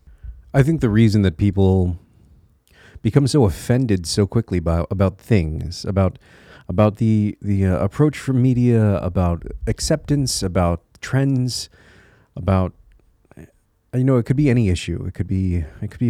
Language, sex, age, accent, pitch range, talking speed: English, male, 30-49, American, 90-110 Hz, 150 wpm